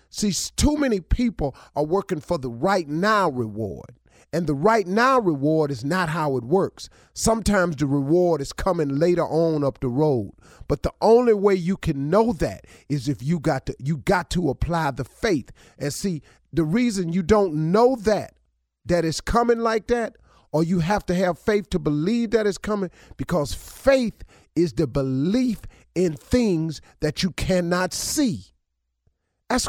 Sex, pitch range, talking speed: male, 135-210 Hz, 175 wpm